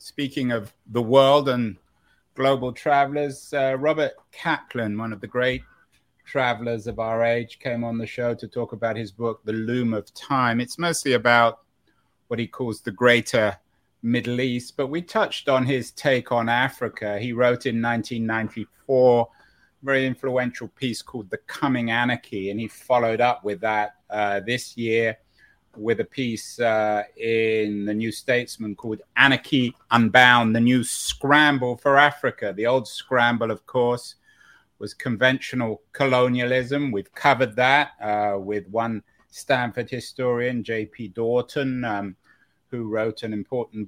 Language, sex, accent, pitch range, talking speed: English, male, British, 110-130 Hz, 150 wpm